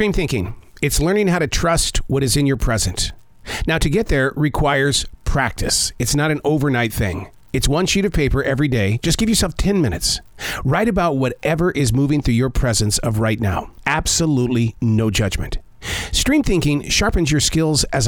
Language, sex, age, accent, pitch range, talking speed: English, male, 40-59, American, 115-165 Hz, 185 wpm